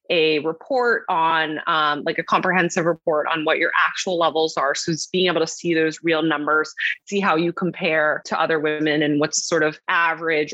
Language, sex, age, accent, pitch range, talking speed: English, female, 20-39, American, 155-180 Hz, 200 wpm